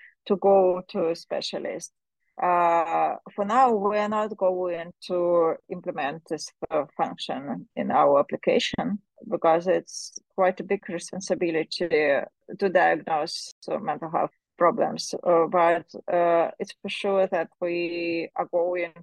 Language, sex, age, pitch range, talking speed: English, female, 30-49, 170-230 Hz, 130 wpm